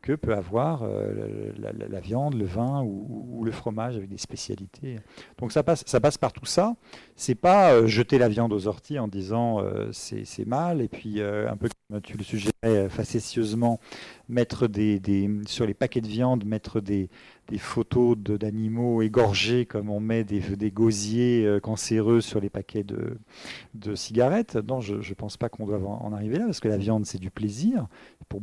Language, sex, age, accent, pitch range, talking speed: French, male, 40-59, French, 105-125 Hz, 200 wpm